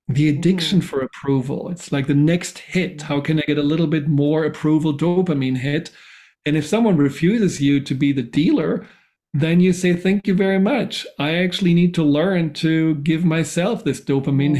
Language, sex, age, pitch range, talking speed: English, male, 40-59, 140-170 Hz, 190 wpm